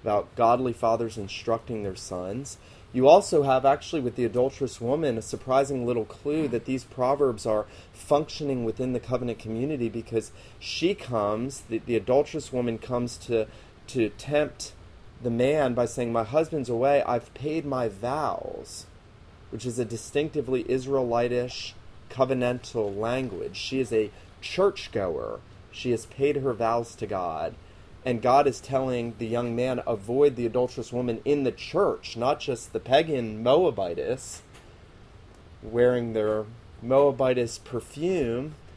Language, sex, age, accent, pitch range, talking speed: English, male, 30-49, American, 110-130 Hz, 140 wpm